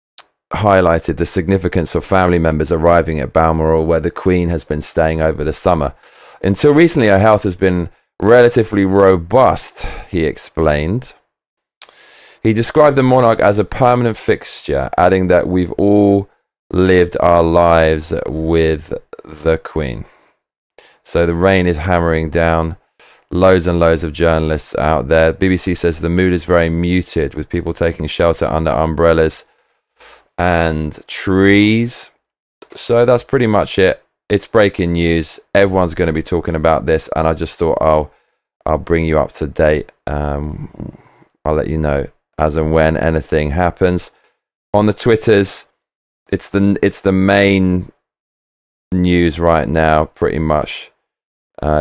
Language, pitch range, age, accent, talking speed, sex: English, 80-95 Hz, 30-49, British, 145 wpm, male